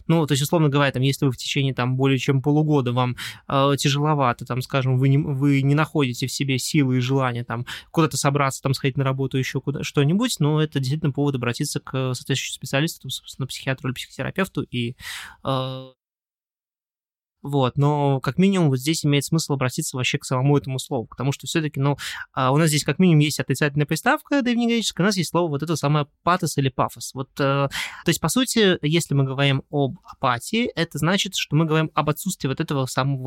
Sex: male